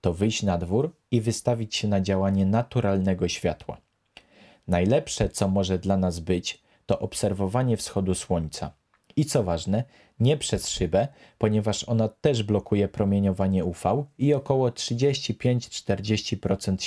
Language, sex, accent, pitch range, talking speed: Polish, male, native, 95-115 Hz, 130 wpm